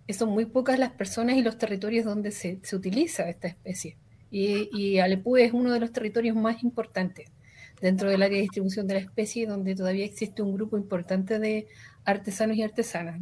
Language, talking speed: Spanish, 190 wpm